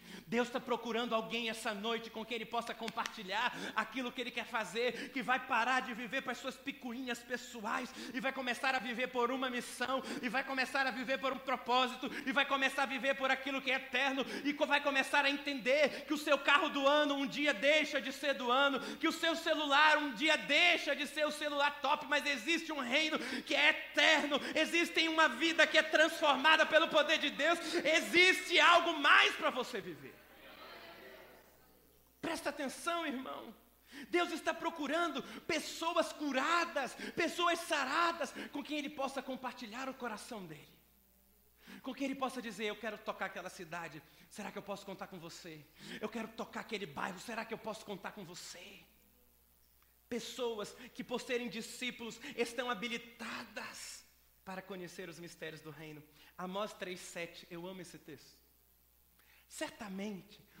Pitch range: 220-290 Hz